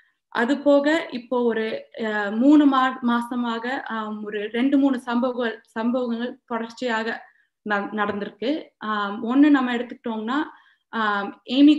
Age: 20-39